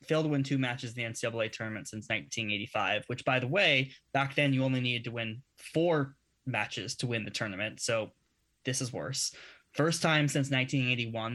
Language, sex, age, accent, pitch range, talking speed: English, male, 20-39, American, 110-135 Hz, 190 wpm